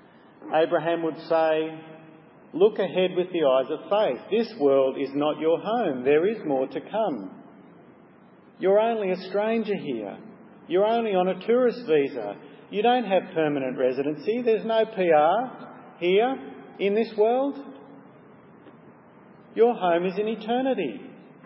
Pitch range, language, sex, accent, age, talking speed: 150-200 Hz, English, male, Australian, 50-69, 135 wpm